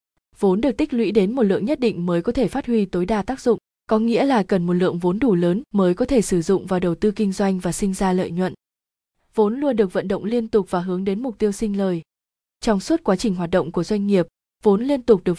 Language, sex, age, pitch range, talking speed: Vietnamese, female, 20-39, 180-225 Hz, 270 wpm